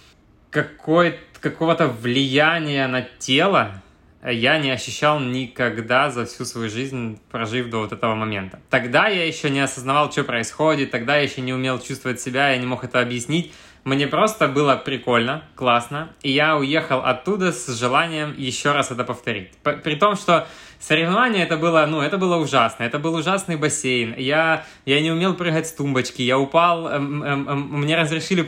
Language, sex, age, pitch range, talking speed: Russian, male, 20-39, 125-155 Hz, 160 wpm